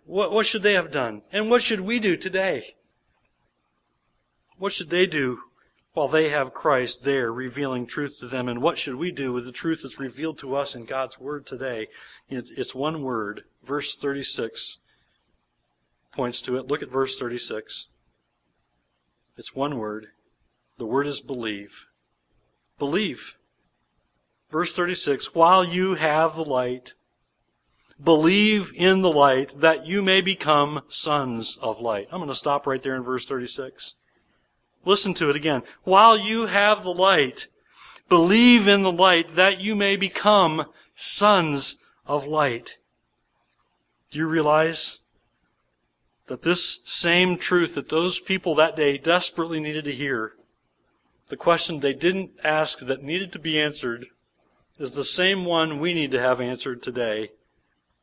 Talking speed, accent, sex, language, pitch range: 150 wpm, American, male, English, 120-175 Hz